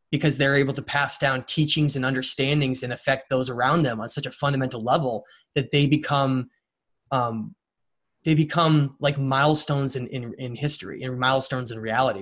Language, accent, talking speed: English, American, 180 wpm